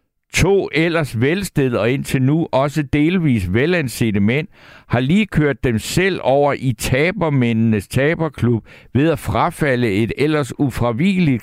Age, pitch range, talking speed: 60-79, 105-150 Hz, 130 wpm